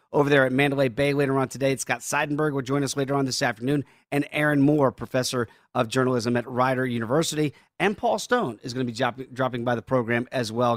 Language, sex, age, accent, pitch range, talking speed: English, male, 40-59, American, 125-170 Hz, 230 wpm